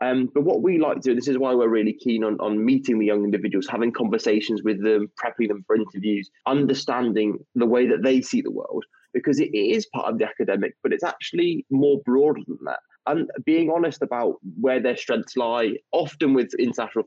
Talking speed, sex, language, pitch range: 210 wpm, male, English, 115-175 Hz